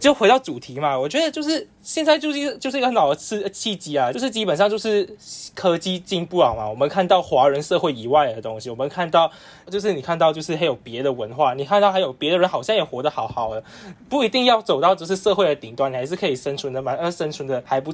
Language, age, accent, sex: Chinese, 10-29, native, male